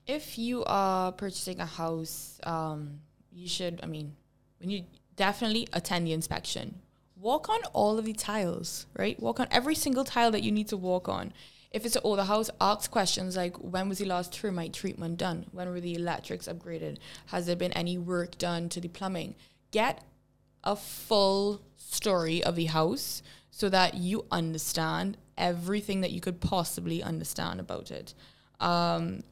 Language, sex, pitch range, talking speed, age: English, female, 165-195 Hz, 170 wpm, 20-39